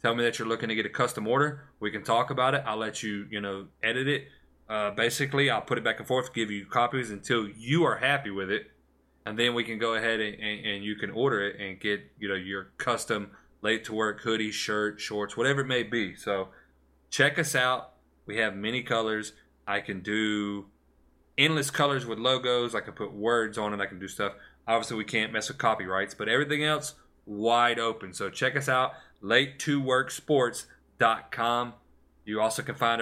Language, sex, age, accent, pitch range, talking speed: English, male, 30-49, American, 100-125 Hz, 205 wpm